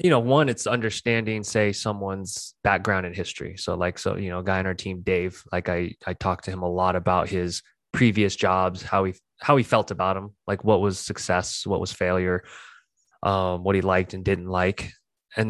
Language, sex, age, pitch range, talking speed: English, male, 20-39, 90-105 Hz, 215 wpm